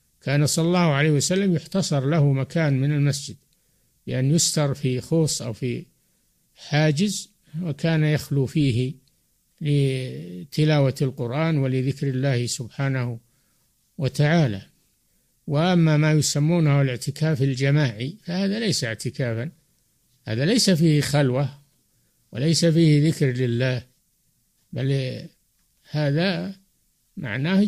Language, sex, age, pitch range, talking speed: Arabic, male, 60-79, 130-160 Hz, 100 wpm